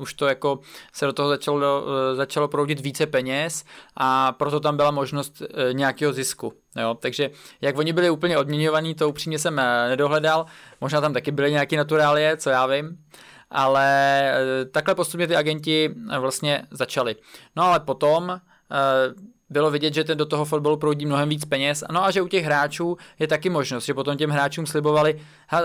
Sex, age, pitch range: male, 20-39, 135-155 Hz